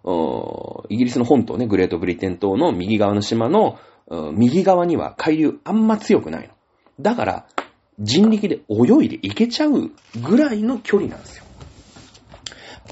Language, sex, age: Japanese, male, 40-59